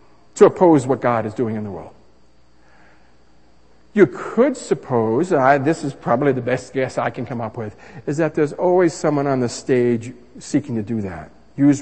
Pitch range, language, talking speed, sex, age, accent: 105-160 Hz, English, 185 wpm, male, 60-79, American